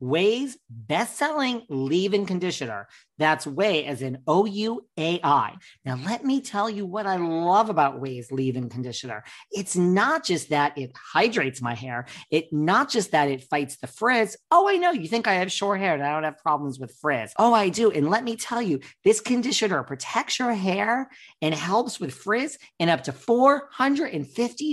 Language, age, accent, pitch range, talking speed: English, 40-59, American, 140-225 Hz, 180 wpm